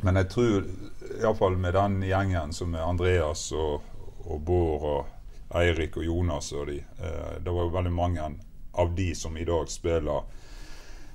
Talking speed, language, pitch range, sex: 170 wpm, English, 80-95 Hz, male